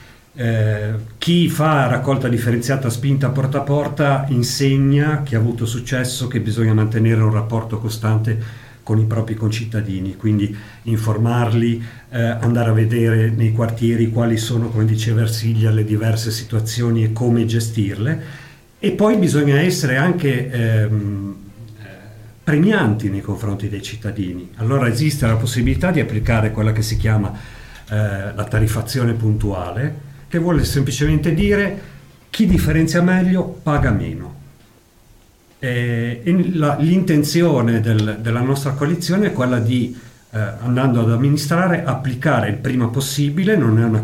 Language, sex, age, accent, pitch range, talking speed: Italian, male, 50-69, native, 110-140 Hz, 135 wpm